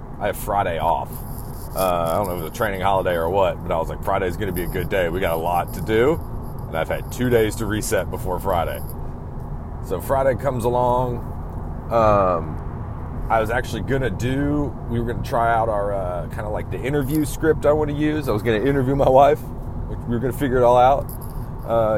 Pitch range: 105-125 Hz